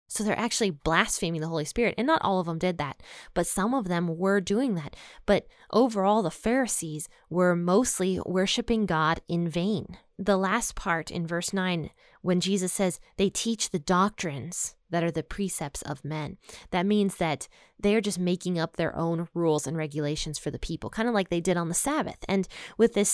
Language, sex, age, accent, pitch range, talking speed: English, female, 20-39, American, 170-210 Hz, 195 wpm